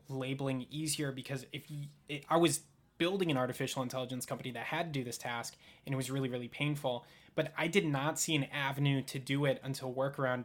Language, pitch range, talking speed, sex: English, 130-155 Hz, 200 wpm, male